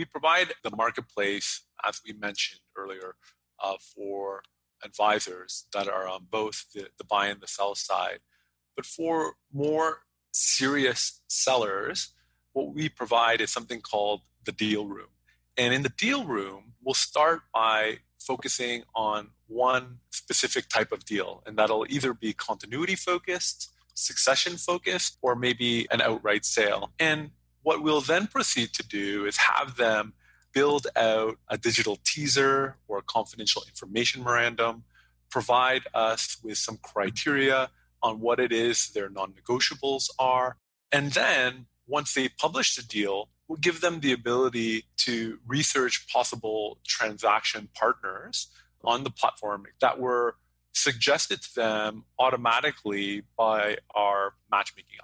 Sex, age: male, 30-49